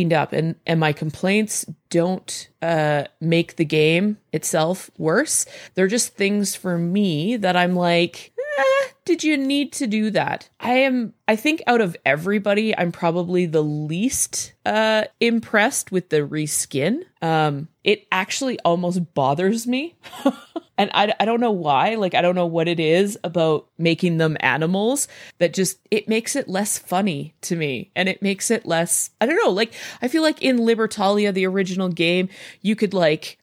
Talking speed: 170 wpm